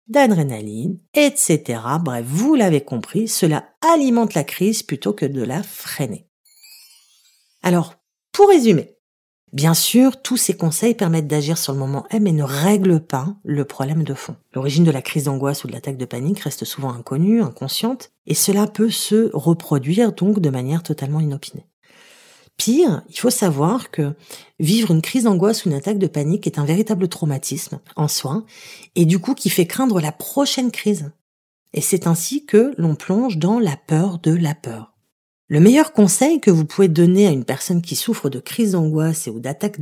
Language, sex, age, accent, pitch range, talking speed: French, female, 40-59, French, 150-210 Hz, 180 wpm